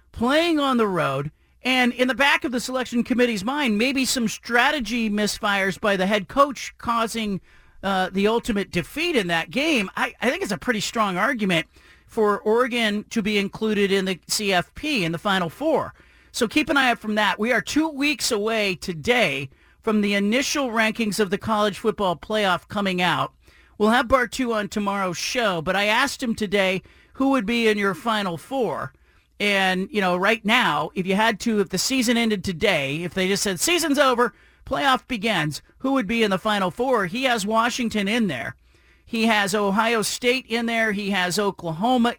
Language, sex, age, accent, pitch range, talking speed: English, male, 40-59, American, 195-245 Hz, 190 wpm